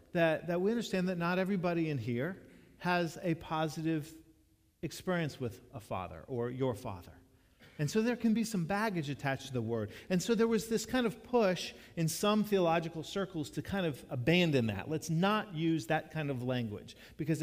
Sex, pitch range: male, 110-160 Hz